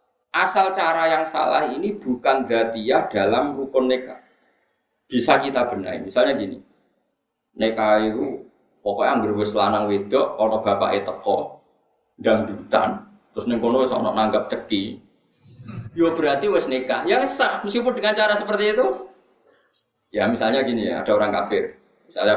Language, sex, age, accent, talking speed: Indonesian, male, 20-39, native, 135 wpm